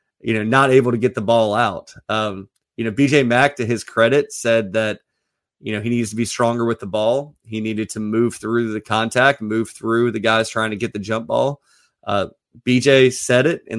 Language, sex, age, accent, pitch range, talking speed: English, male, 30-49, American, 110-130 Hz, 220 wpm